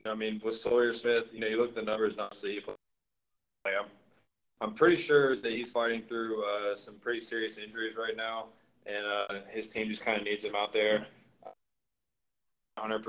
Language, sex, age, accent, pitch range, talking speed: English, male, 20-39, American, 100-110 Hz, 195 wpm